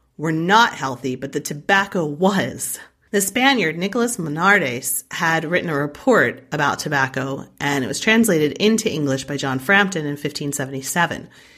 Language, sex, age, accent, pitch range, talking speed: English, female, 30-49, American, 150-220 Hz, 145 wpm